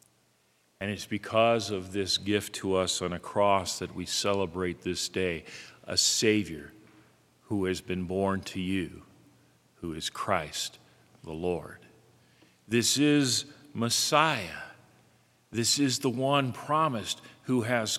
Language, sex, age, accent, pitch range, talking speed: English, male, 50-69, American, 95-125 Hz, 130 wpm